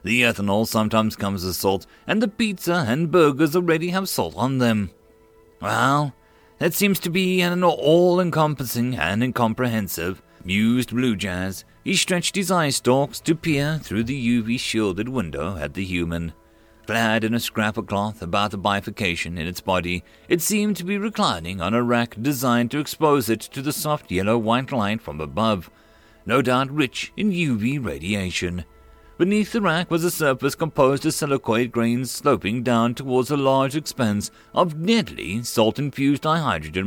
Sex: male